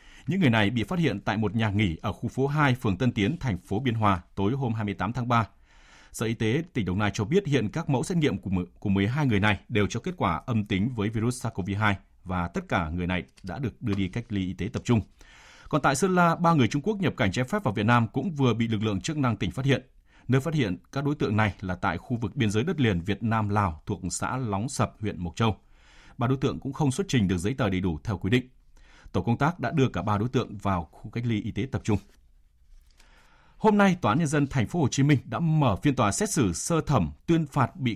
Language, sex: Vietnamese, male